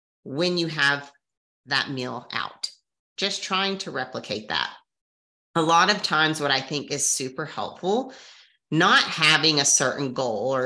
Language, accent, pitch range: English, American, 135-180 Hz